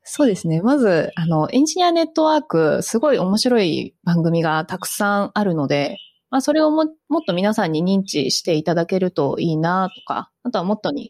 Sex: female